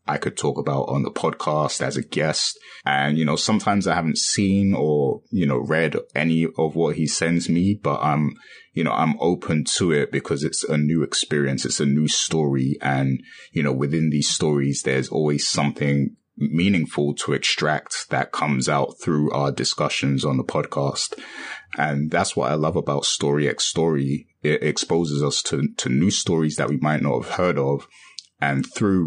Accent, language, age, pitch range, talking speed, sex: British, English, 20-39, 70-80 Hz, 185 wpm, male